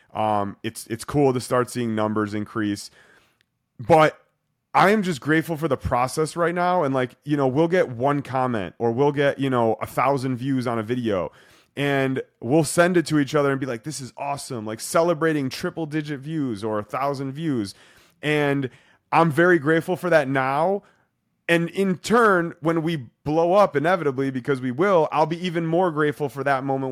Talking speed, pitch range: 190 wpm, 125-155 Hz